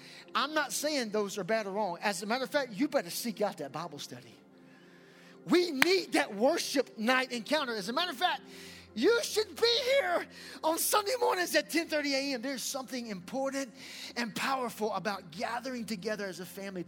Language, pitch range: English, 195-280 Hz